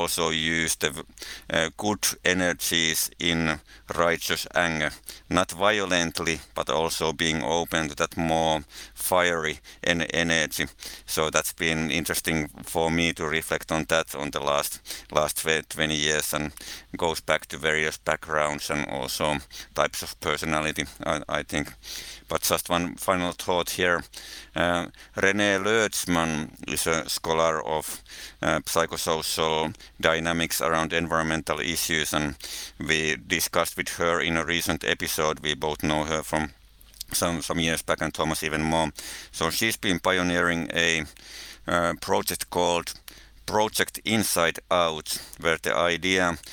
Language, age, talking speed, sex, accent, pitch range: English, 50-69, 135 wpm, male, Finnish, 80-90 Hz